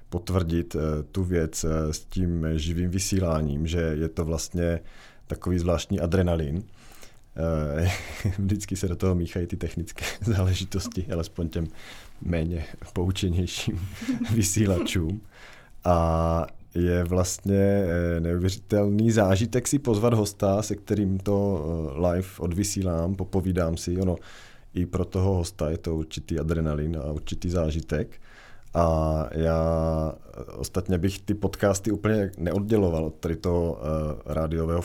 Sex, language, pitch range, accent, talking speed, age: male, Czech, 80-100 Hz, native, 110 wpm, 30-49